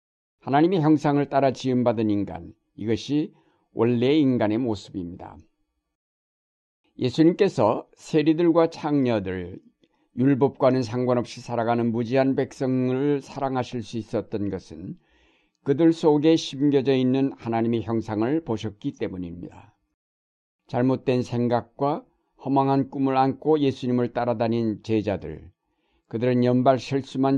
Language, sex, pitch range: Korean, male, 110-140 Hz